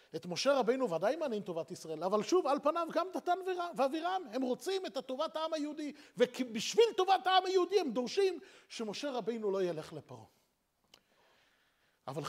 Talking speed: 155 wpm